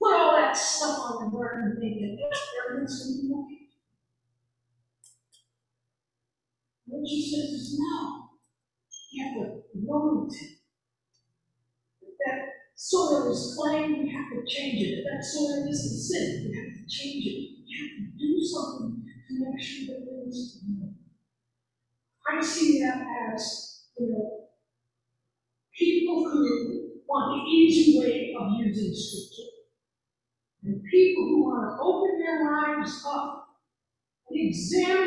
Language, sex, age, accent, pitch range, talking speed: English, female, 50-69, American, 205-300 Hz, 140 wpm